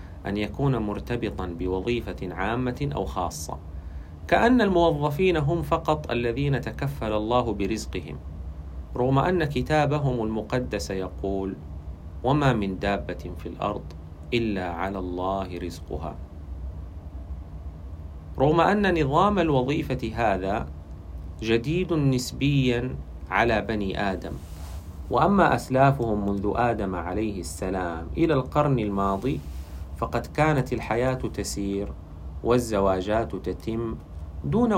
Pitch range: 80-125 Hz